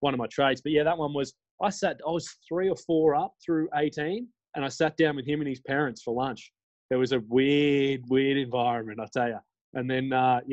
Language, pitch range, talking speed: English, 120-150 Hz, 240 wpm